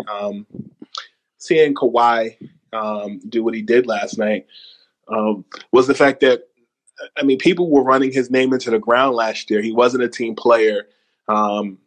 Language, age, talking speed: English, 20-39, 165 wpm